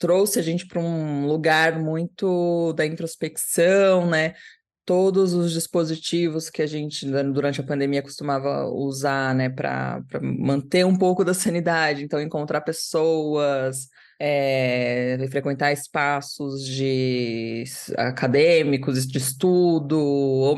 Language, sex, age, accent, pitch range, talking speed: Portuguese, female, 20-39, Brazilian, 140-165 Hz, 110 wpm